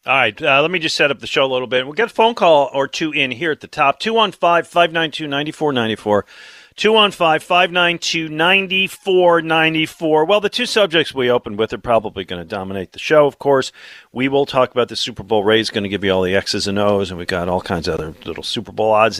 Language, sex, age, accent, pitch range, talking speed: English, male, 40-59, American, 115-165 Hz, 220 wpm